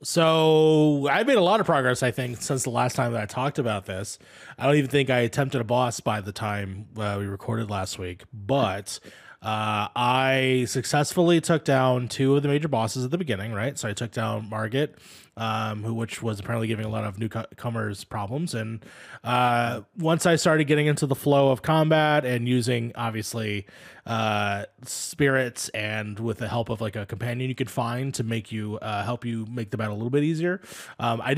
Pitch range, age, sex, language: 110-150 Hz, 20-39, male, English